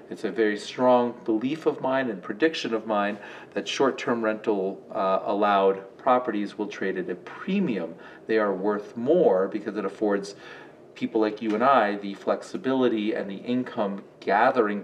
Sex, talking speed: male, 150 wpm